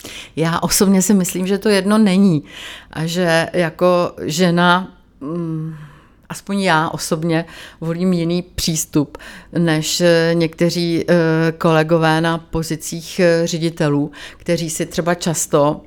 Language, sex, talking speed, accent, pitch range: Czech, female, 105 wpm, native, 155-170 Hz